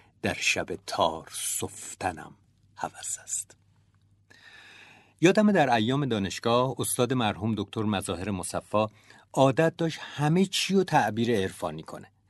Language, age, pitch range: Persian, 50-69, 105-150 Hz